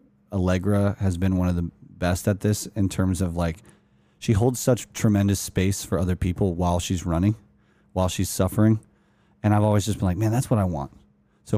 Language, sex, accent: English, male, American